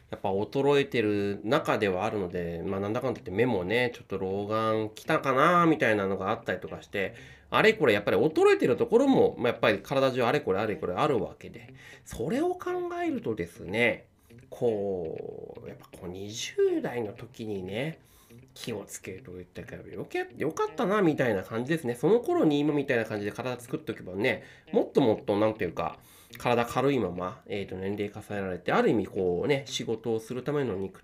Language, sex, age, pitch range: Japanese, male, 30-49, 105-165 Hz